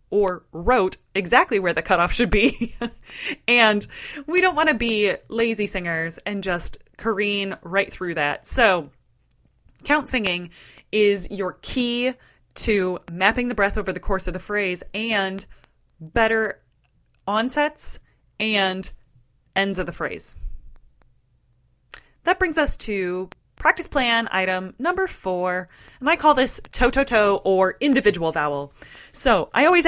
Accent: American